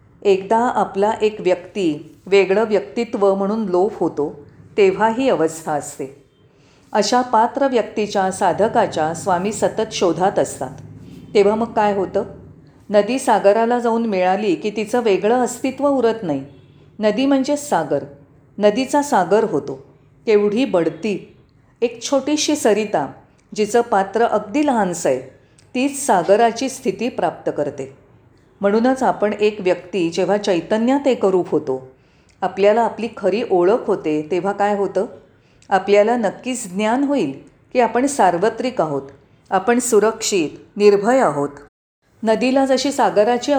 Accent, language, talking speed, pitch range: native, Marathi, 125 wpm, 180-235 Hz